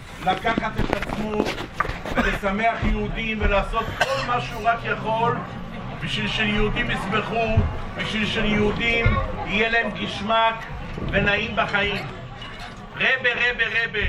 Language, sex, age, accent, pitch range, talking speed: English, male, 50-69, Israeli, 195-230 Hz, 95 wpm